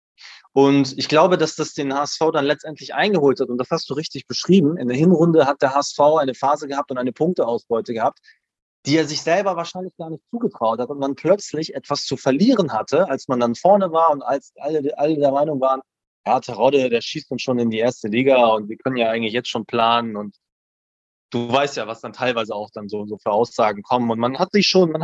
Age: 30-49